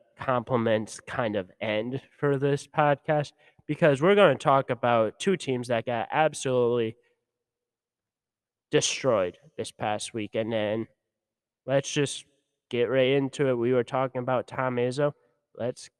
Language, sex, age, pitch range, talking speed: English, male, 20-39, 120-140 Hz, 135 wpm